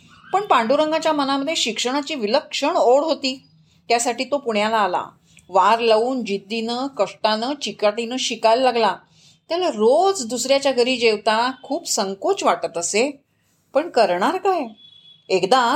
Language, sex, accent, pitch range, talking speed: Marathi, female, native, 200-280 Hz, 120 wpm